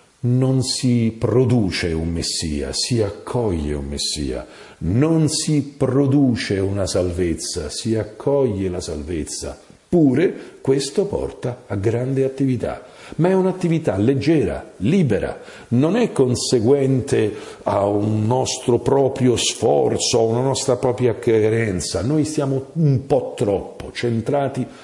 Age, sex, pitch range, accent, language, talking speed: 50-69, male, 110-145 Hz, Italian, English, 115 wpm